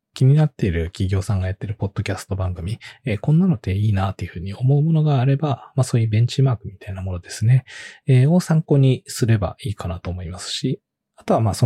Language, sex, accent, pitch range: Japanese, male, native, 95-145 Hz